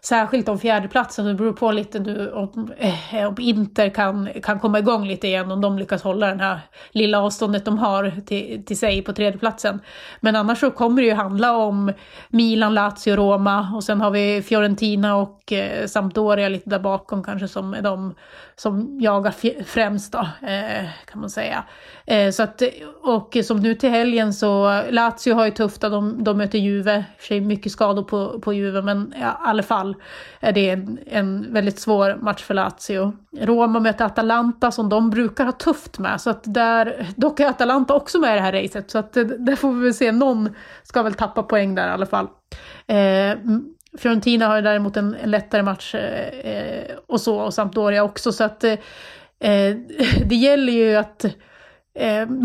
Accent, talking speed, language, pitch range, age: Swedish, 185 wpm, English, 205-235 Hz, 30-49